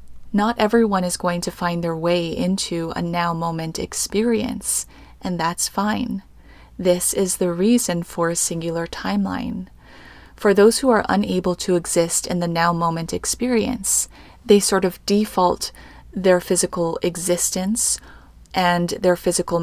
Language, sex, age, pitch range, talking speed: English, female, 20-39, 170-195 Hz, 140 wpm